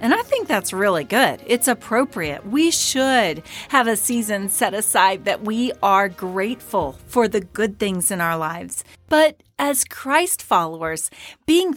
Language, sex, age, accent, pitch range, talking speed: English, female, 40-59, American, 195-255 Hz, 160 wpm